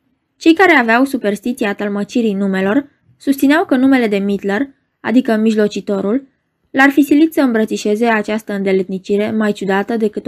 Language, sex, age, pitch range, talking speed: Romanian, female, 20-39, 205-280 Hz, 135 wpm